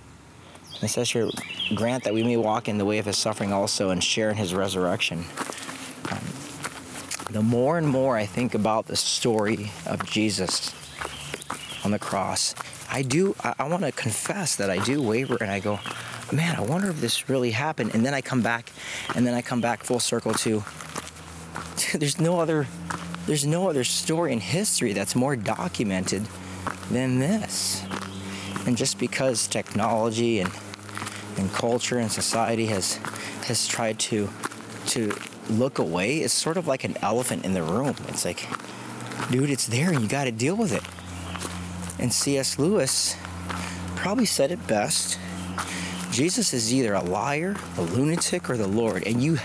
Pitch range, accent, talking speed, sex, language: 95-125 Hz, American, 165 wpm, male, English